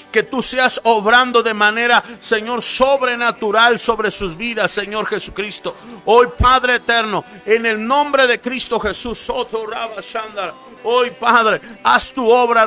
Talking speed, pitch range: 130 wpm, 225-255 Hz